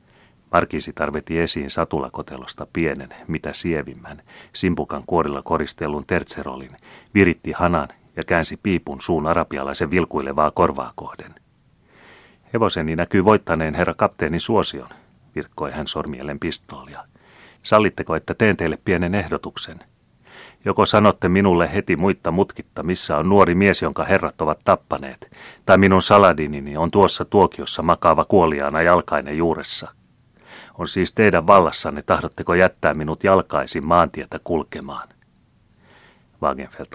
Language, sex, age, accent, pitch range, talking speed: Finnish, male, 30-49, native, 75-95 Hz, 115 wpm